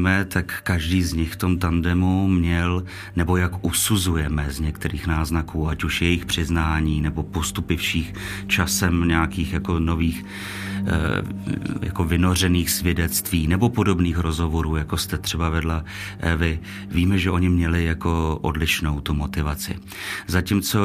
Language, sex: Czech, male